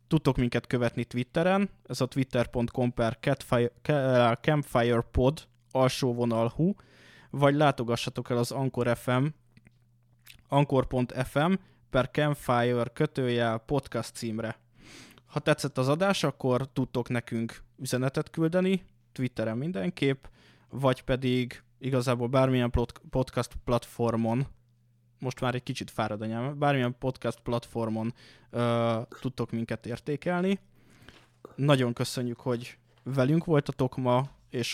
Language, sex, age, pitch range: Hungarian, male, 20-39, 120-135 Hz